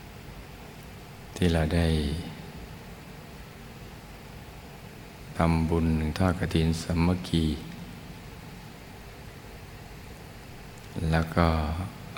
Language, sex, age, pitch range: Thai, male, 60-79, 80-90 Hz